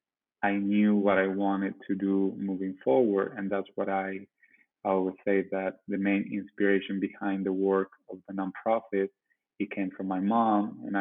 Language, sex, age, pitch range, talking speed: English, male, 20-39, 95-100 Hz, 170 wpm